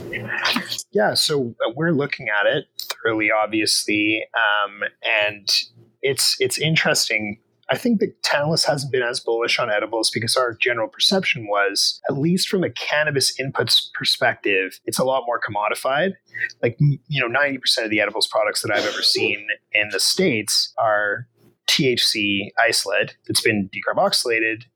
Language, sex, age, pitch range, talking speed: English, male, 30-49, 110-170 Hz, 150 wpm